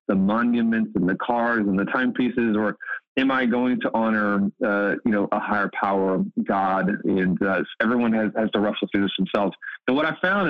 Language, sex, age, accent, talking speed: English, male, 30-49, American, 205 wpm